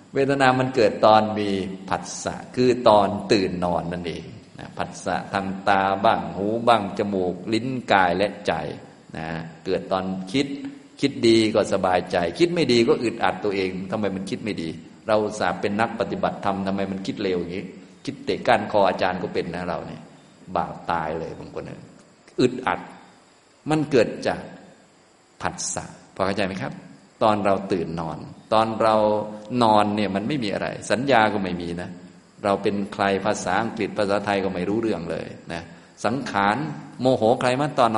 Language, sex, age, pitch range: Thai, male, 20-39, 90-110 Hz